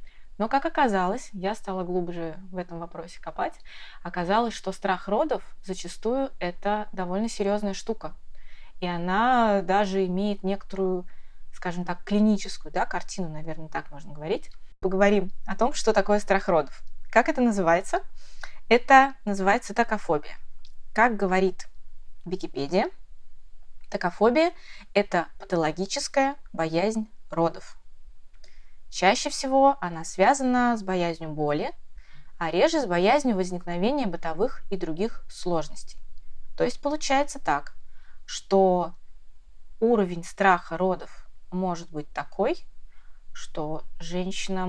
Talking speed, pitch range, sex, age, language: 110 wpm, 170-210 Hz, female, 20-39, Russian